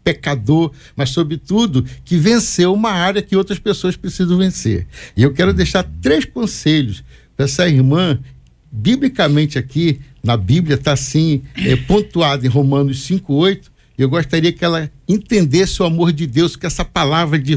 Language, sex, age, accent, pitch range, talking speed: Portuguese, male, 60-79, Brazilian, 135-175 Hz, 155 wpm